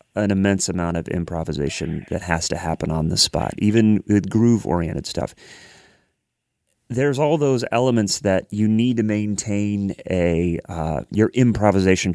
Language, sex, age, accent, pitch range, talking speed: English, male, 30-49, American, 90-110 Hz, 145 wpm